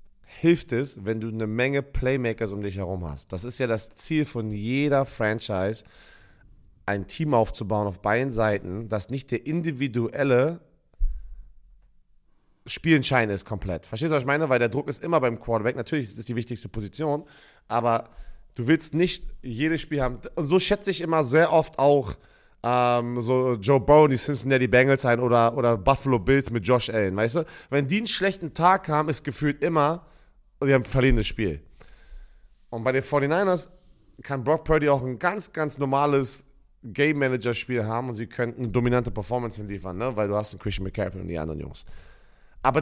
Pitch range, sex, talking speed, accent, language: 110-145 Hz, male, 180 wpm, German, German